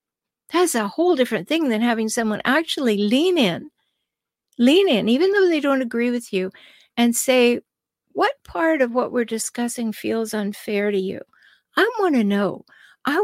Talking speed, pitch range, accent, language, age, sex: 170 wpm, 210-275 Hz, American, English, 60-79, female